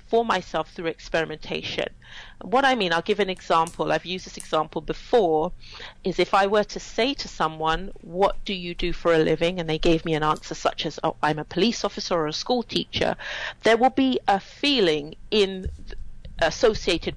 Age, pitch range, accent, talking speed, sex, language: 40-59, 160-200 Hz, British, 190 wpm, female, English